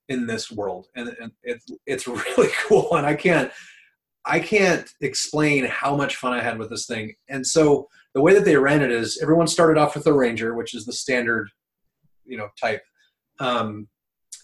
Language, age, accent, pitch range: English, 30-49, American, 115-150 Hz